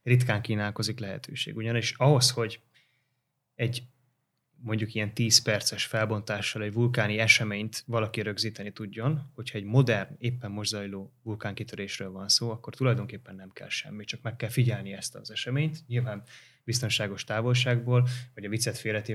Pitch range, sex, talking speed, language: 105-130 Hz, male, 140 wpm, Hungarian